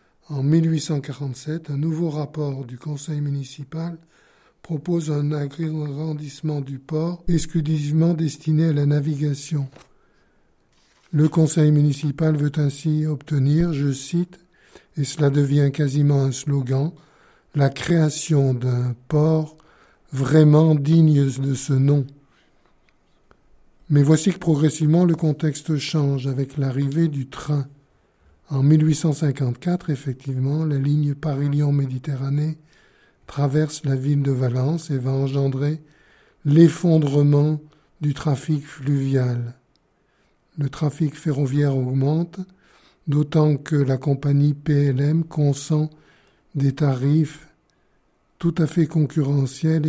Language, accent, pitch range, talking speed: French, French, 140-155 Hz, 105 wpm